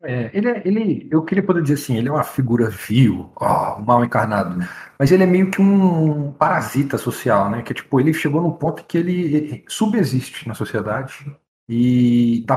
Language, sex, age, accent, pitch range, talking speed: Portuguese, male, 40-59, Brazilian, 115-155 Hz, 195 wpm